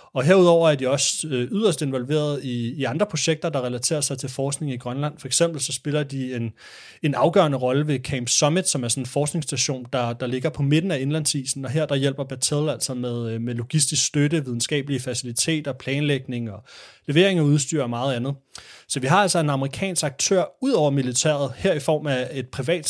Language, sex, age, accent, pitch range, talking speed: Danish, male, 30-49, native, 130-155 Hz, 205 wpm